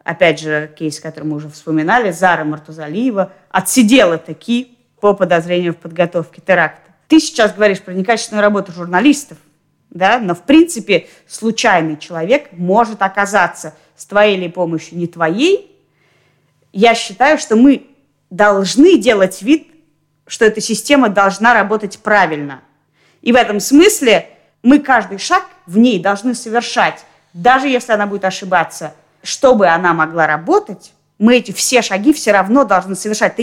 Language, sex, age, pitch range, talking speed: Russian, female, 30-49, 175-245 Hz, 140 wpm